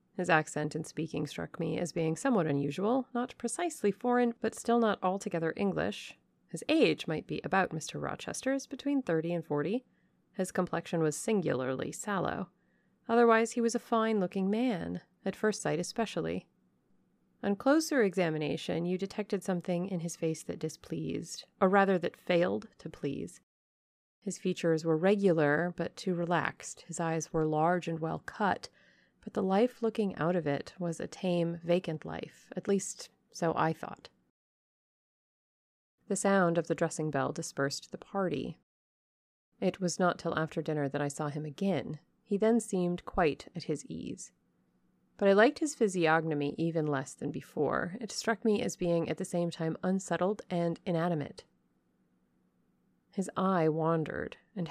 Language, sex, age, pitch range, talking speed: English, female, 30-49, 160-200 Hz, 155 wpm